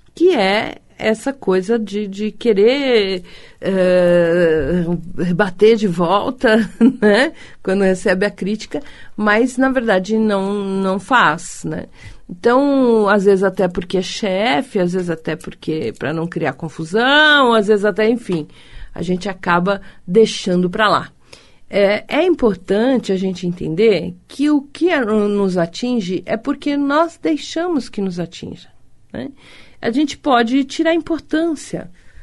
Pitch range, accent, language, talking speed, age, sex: 195-295 Hz, Brazilian, Portuguese, 130 wpm, 40-59, female